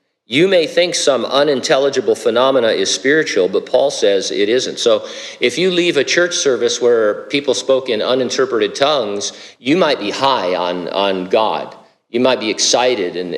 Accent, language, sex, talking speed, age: American, English, male, 170 wpm, 50-69